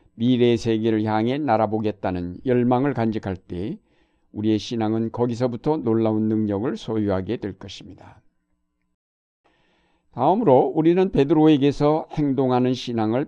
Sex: male